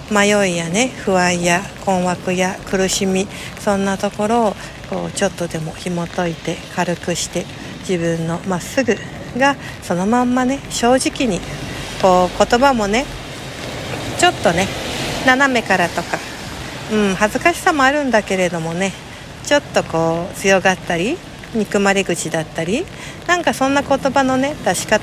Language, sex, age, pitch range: Japanese, female, 60-79, 185-260 Hz